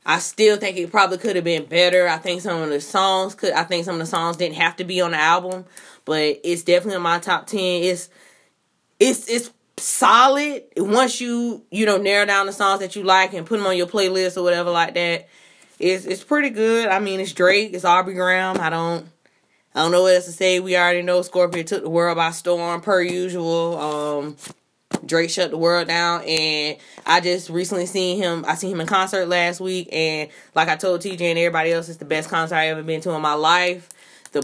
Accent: American